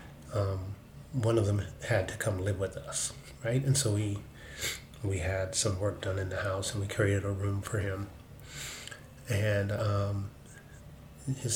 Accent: American